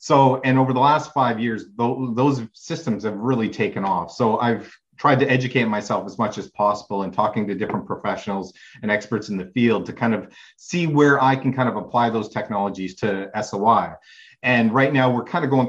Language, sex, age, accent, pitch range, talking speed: English, male, 30-49, American, 105-130 Hz, 205 wpm